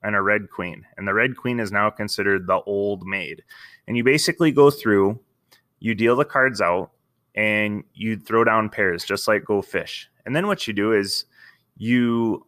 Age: 20-39